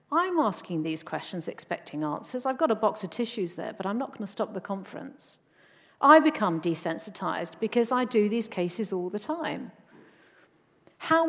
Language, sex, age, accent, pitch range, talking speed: English, female, 50-69, British, 180-240 Hz, 175 wpm